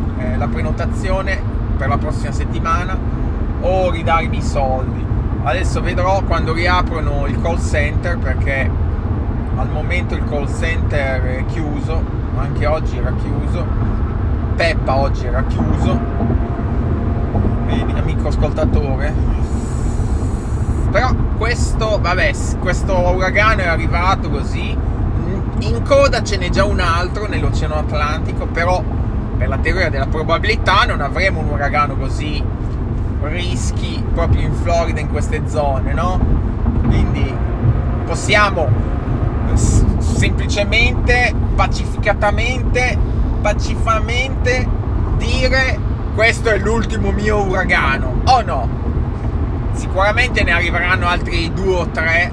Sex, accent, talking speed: male, native, 105 wpm